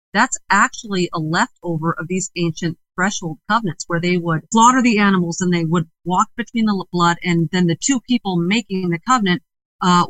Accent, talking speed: American, 185 wpm